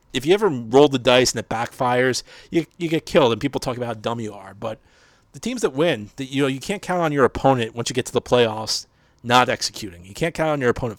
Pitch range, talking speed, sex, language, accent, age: 110-140 Hz, 270 wpm, male, English, American, 40-59